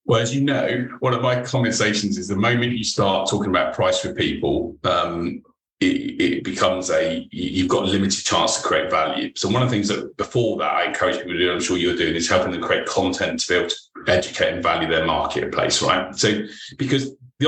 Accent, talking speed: British, 225 wpm